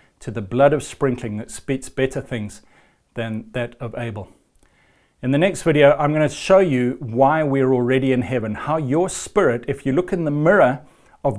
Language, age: English, 40-59